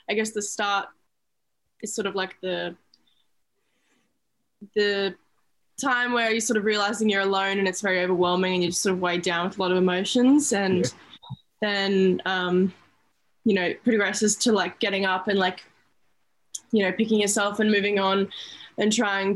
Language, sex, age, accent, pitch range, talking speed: English, female, 10-29, Australian, 190-220 Hz, 175 wpm